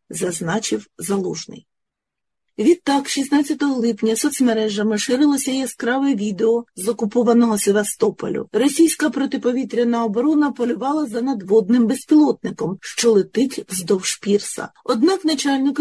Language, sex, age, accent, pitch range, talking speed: Ukrainian, female, 30-49, native, 165-235 Hz, 95 wpm